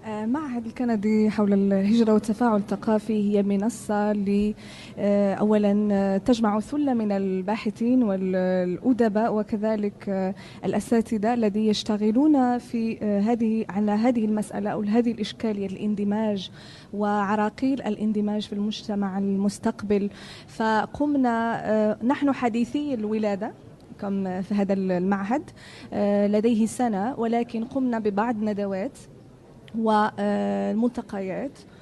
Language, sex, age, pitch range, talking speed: Arabic, female, 20-39, 205-235 Hz, 90 wpm